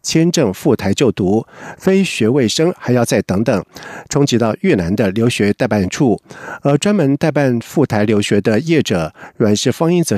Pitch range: 110-150 Hz